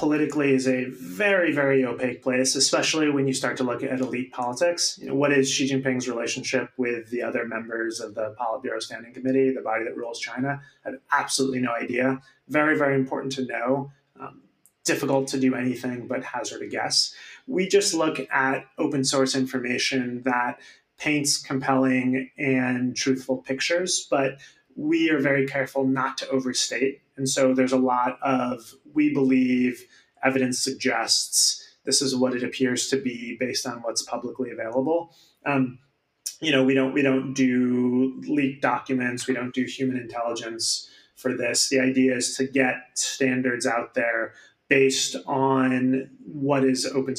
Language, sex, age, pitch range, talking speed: English, male, 30-49, 125-140 Hz, 165 wpm